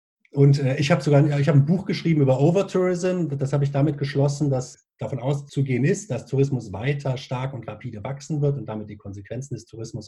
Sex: male